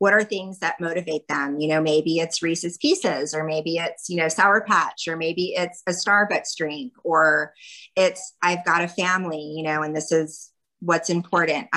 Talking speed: 195 wpm